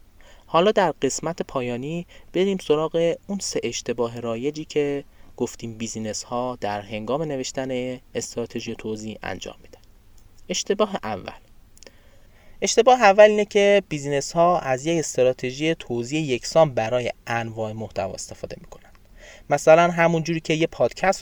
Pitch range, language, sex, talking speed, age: 115-160 Hz, Persian, male, 125 wpm, 20-39